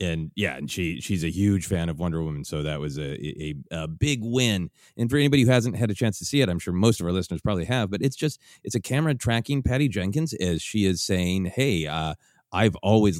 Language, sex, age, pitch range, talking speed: English, male, 30-49, 85-120 Hz, 245 wpm